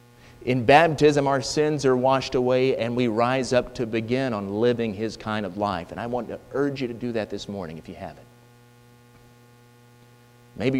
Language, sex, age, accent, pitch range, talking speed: English, male, 40-59, American, 120-130 Hz, 190 wpm